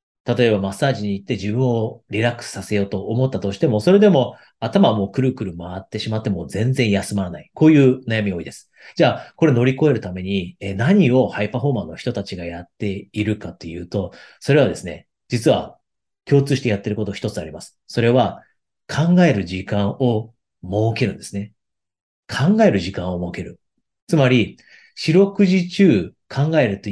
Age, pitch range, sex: 40-59, 100-135 Hz, male